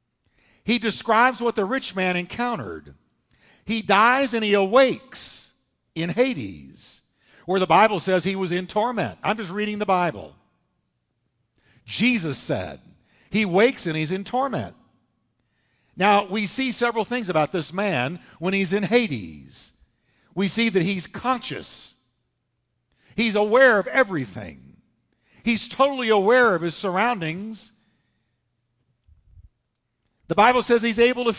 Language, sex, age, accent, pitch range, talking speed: English, male, 50-69, American, 160-230 Hz, 130 wpm